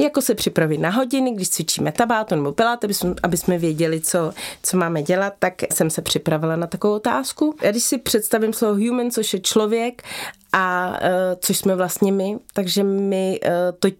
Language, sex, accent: Czech, female, native